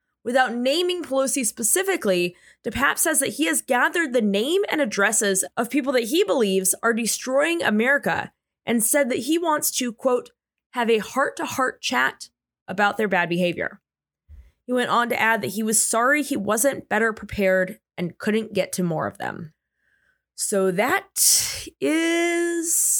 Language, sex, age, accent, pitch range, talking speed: English, female, 20-39, American, 205-290 Hz, 160 wpm